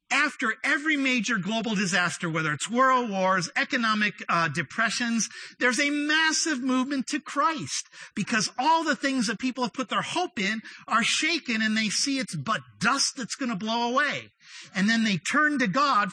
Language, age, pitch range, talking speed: English, 50-69, 200-280 Hz, 180 wpm